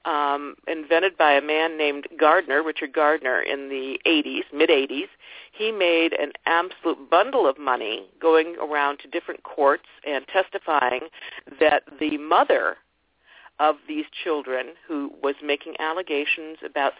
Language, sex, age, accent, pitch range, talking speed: English, female, 50-69, American, 145-190 Hz, 135 wpm